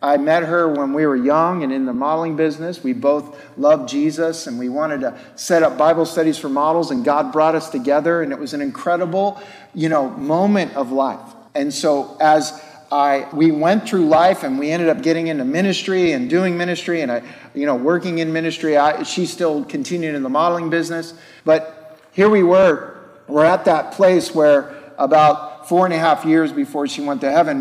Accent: American